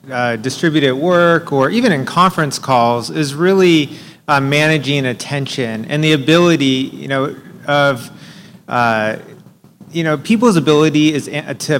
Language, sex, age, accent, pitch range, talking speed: English, male, 30-49, American, 135-170 Hz, 125 wpm